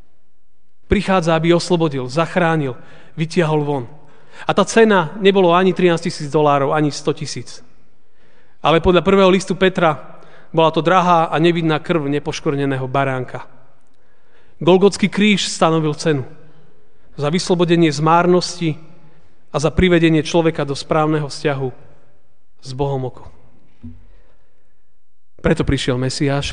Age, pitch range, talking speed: 40-59, 145-180 Hz, 115 wpm